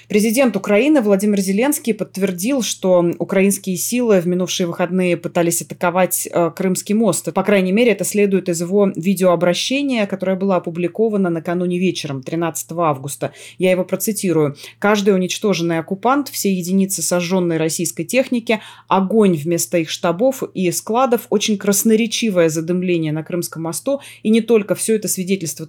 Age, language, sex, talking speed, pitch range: 20-39, Russian, female, 140 wpm, 170-205 Hz